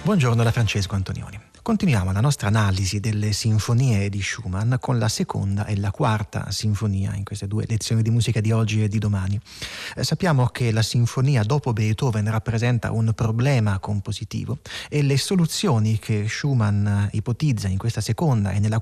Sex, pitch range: male, 110-145 Hz